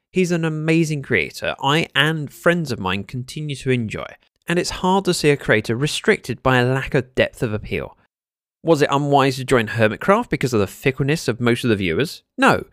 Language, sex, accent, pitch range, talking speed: English, male, British, 120-175 Hz, 205 wpm